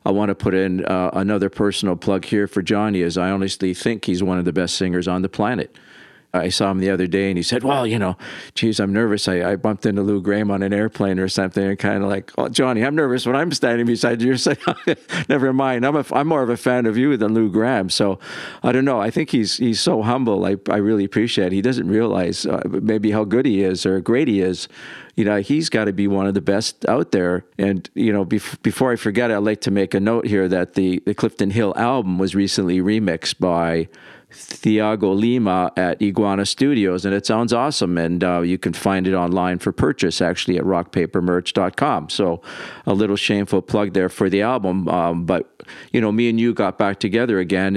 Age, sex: 50-69, male